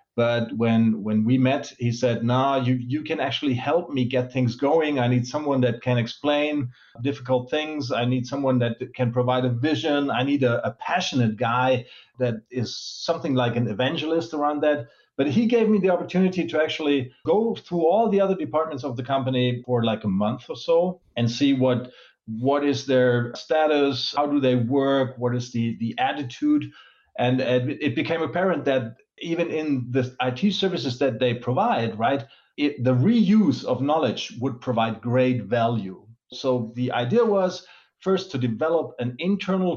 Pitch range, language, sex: 120-150 Hz, English, male